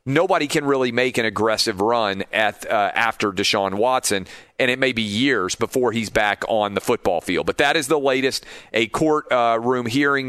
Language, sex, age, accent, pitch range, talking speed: English, male, 40-59, American, 105-125 Hz, 185 wpm